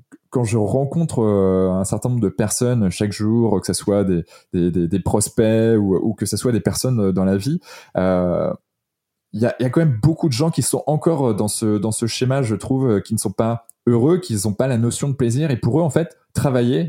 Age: 20-39